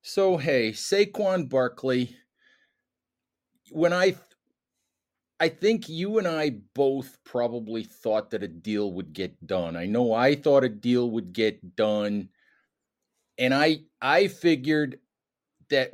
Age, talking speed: 40-59, 130 wpm